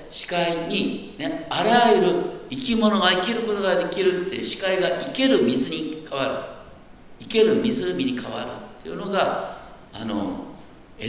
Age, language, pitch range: 60-79, Japanese, 190-260 Hz